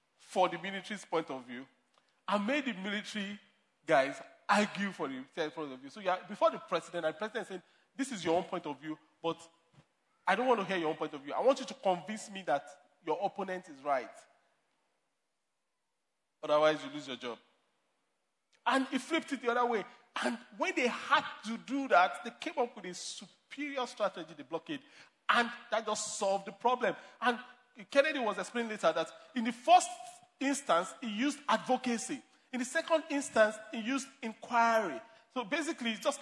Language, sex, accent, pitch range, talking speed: English, male, Nigerian, 195-280 Hz, 190 wpm